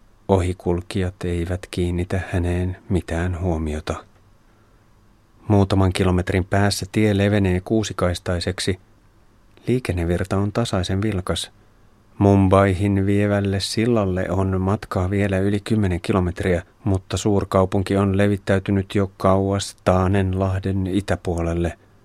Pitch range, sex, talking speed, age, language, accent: 90-110 Hz, male, 90 wpm, 30-49, Finnish, native